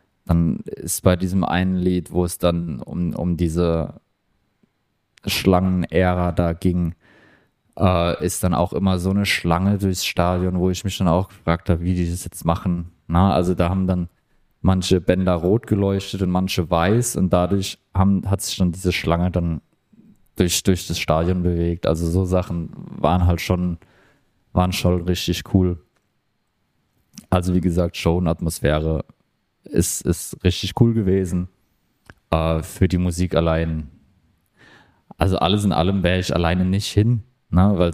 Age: 20-39